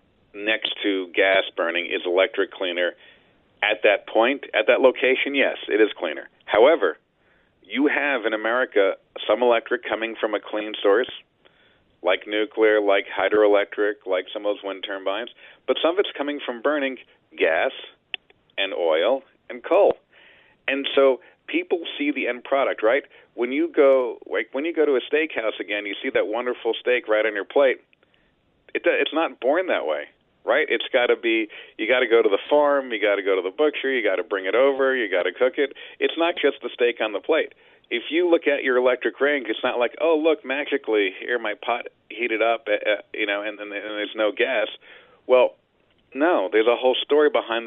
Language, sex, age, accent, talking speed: English, male, 40-59, American, 200 wpm